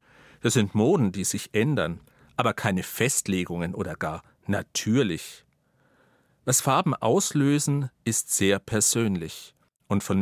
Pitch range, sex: 95-135 Hz, male